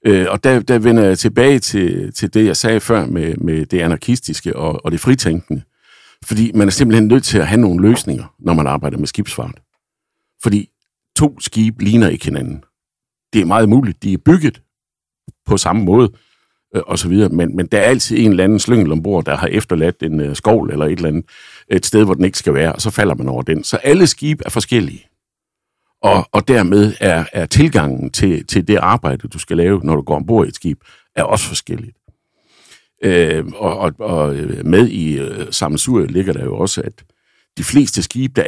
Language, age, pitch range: Danish, 60-79, 80-115 Hz